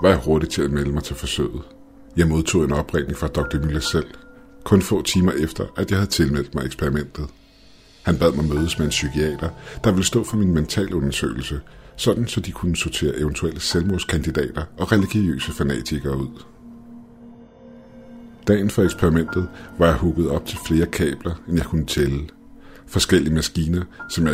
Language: Danish